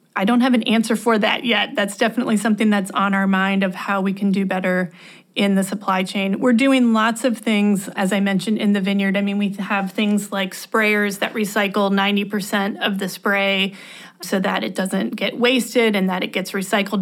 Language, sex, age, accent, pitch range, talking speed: English, female, 30-49, American, 195-225 Hz, 210 wpm